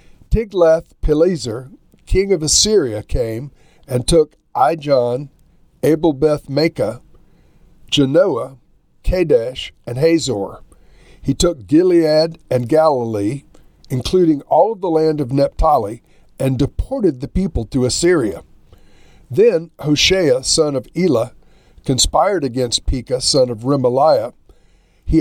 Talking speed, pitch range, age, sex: 100 wpm, 130-165 Hz, 60-79, male